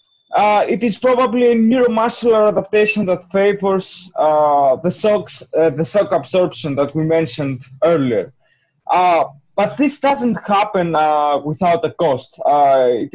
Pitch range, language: 155-210 Hz, English